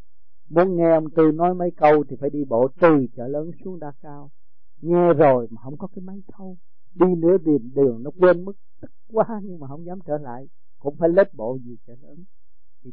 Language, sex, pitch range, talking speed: Vietnamese, male, 125-160 Hz, 220 wpm